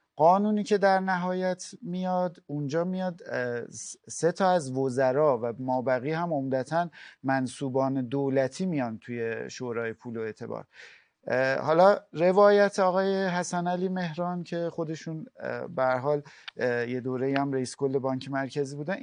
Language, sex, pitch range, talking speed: Persian, male, 130-180 Hz, 130 wpm